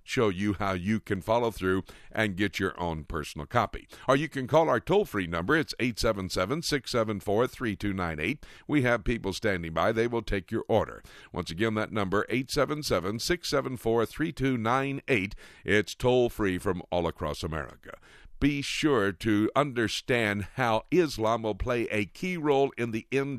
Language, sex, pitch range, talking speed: English, male, 95-120 Hz, 145 wpm